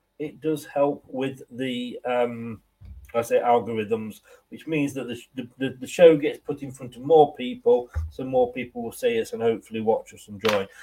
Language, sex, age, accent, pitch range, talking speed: English, male, 40-59, British, 125-180 Hz, 195 wpm